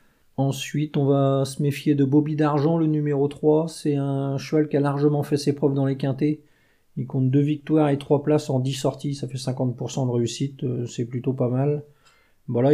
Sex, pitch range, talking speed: male, 115-140 Hz, 205 wpm